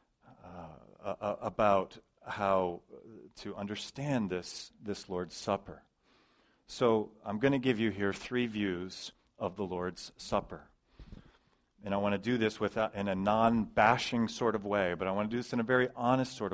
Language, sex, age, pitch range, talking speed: English, male, 40-59, 105-140 Hz, 170 wpm